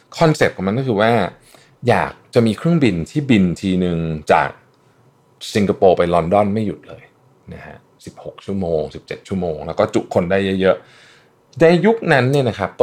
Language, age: Thai, 20-39